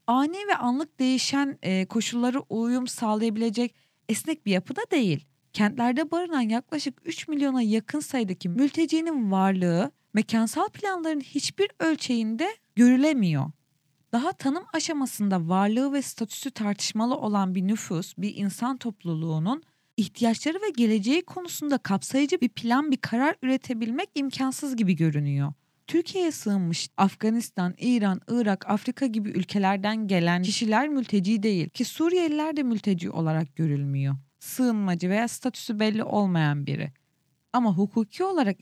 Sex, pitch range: female, 190-270 Hz